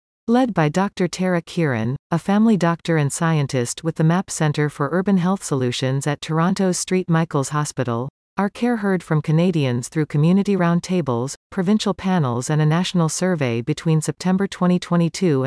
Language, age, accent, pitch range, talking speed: English, 40-59, American, 135-185 Hz, 155 wpm